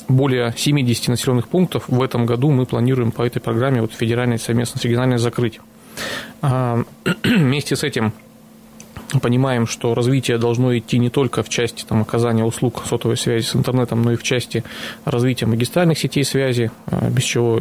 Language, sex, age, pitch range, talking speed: Russian, male, 20-39, 115-130 Hz, 150 wpm